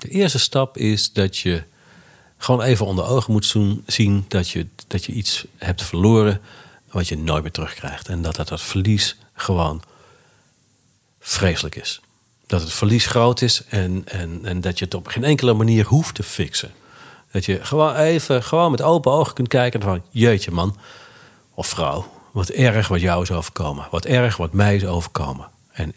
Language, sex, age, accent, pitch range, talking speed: Dutch, male, 50-69, Dutch, 90-125 Hz, 185 wpm